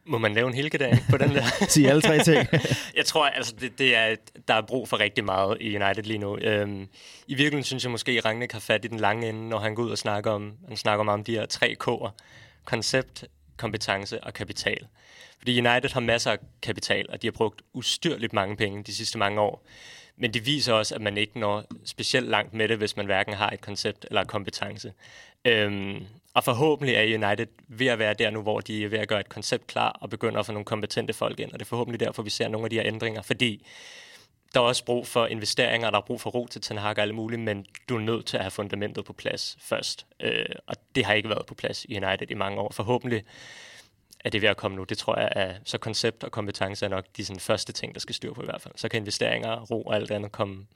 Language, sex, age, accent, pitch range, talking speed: Danish, male, 20-39, native, 105-120 Hz, 250 wpm